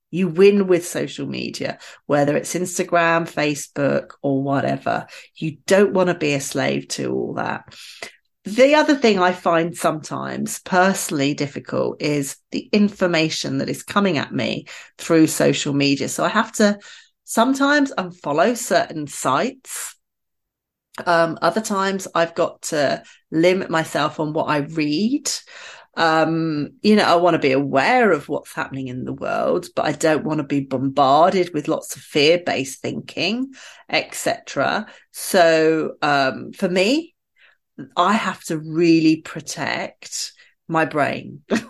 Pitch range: 150-200 Hz